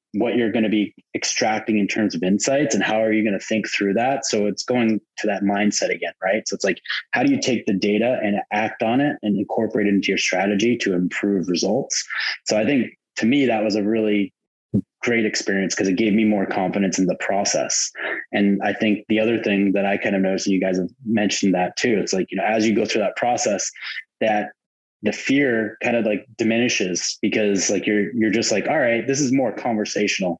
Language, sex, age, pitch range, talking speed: English, male, 20-39, 100-110 Hz, 225 wpm